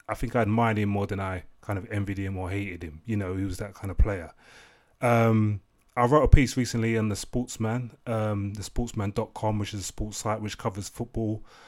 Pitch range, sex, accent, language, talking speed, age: 100-115 Hz, male, British, English, 220 wpm, 20-39